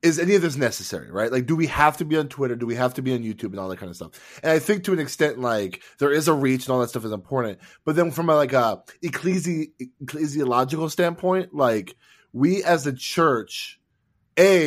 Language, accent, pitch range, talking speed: English, American, 130-175 Hz, 240 wpm